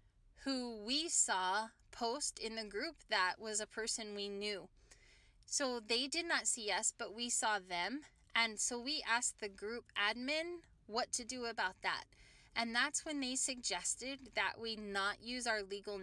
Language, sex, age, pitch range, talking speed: English, female, 10-29, 200-255 Hz, 170 wpm